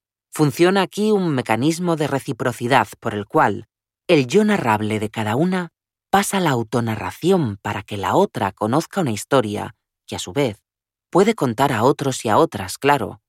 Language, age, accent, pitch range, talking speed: Spanish, 30-49, Spanish, 100-145 Hz, 165 wpm